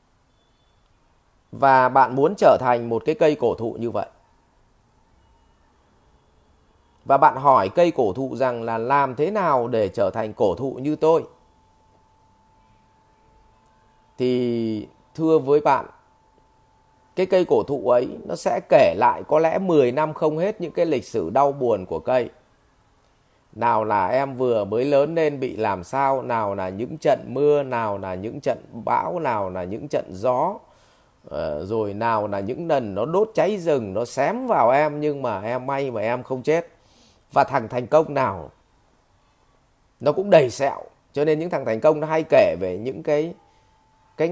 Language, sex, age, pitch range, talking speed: Vietnamese, male, 30-49, 110-150 Hz, 175 wpm